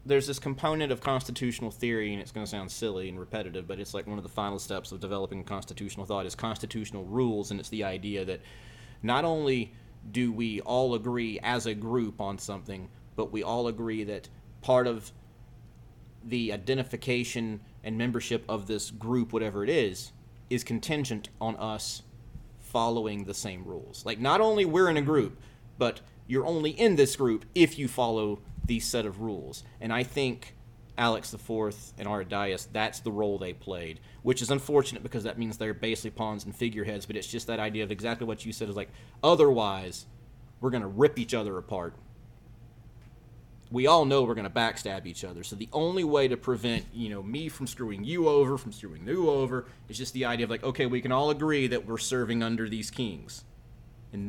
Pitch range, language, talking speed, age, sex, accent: 105-125 Hz, English, 195 wpm, 30-49, male, American